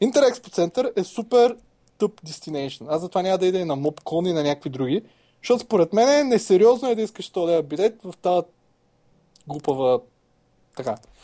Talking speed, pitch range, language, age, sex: 170 wpm, 150-210 Hz, Bulgarian, 20-39, male